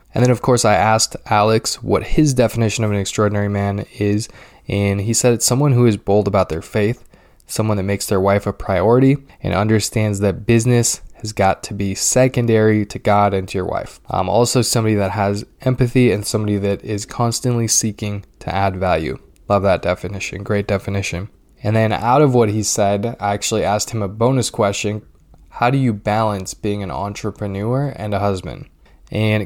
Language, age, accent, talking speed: English, 10-29, American, 190 wpm